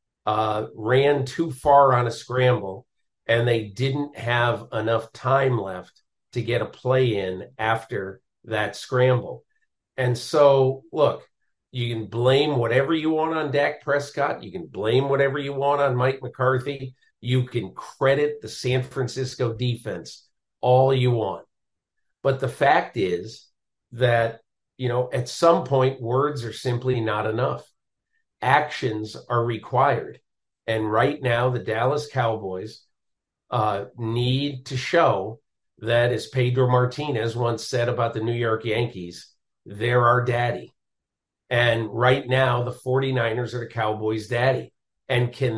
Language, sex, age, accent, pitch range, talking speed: English, male, 50-69, American, 115-130 Hz, 140 wpm